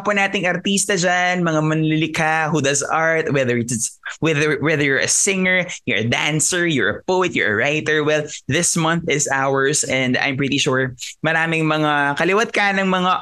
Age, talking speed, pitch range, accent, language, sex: 20-39, 175 wpm, 145-185 Hz, native, Filipino, male